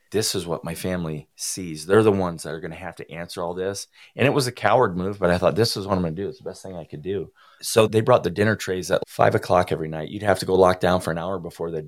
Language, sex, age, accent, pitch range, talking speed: English, male, 30-49, American, 80-95 Hz, 320 wpm